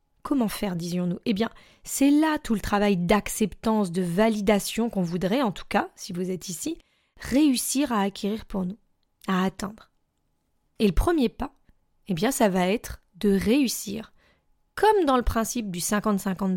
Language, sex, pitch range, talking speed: French, female, 195-270 Hz, 165 wpm